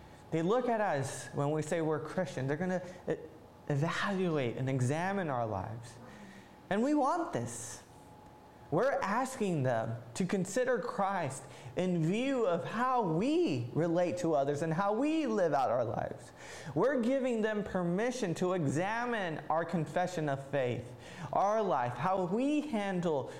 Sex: male